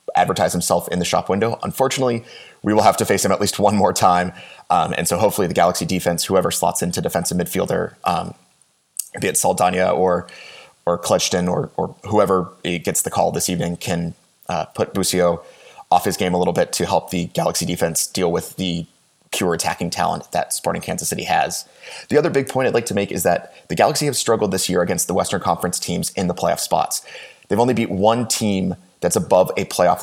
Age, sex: 30-49, male